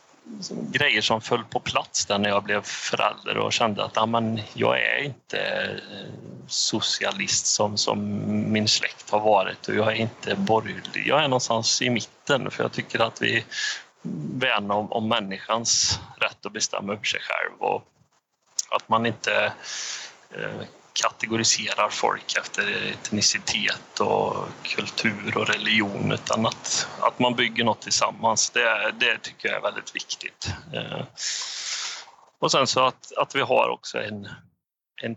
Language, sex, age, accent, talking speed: Swedish, male, 30-49, native, 150 wpm